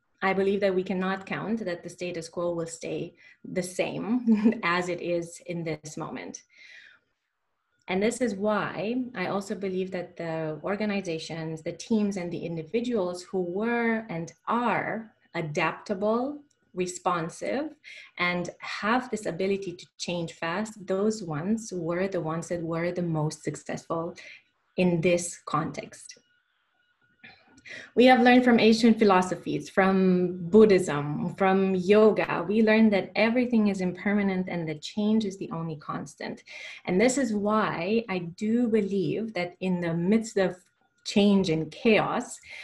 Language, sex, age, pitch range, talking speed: English, female, 20-39, 175-220 Hz, 140 wpm